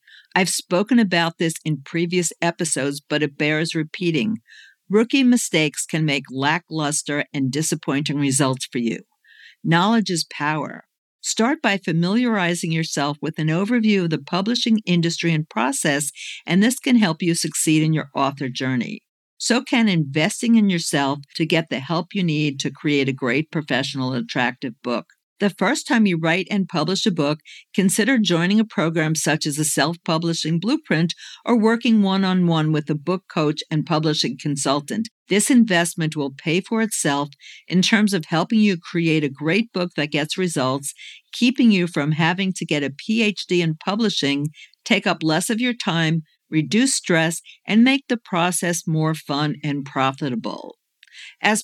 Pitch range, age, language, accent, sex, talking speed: 150-205 Hz, 50-69, English, American, female, 160 wpm